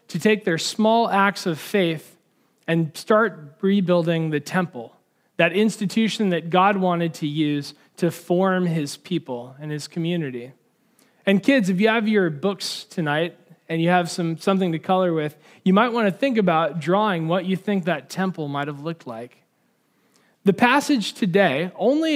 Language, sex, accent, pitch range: English, male, American, 160-210 Hz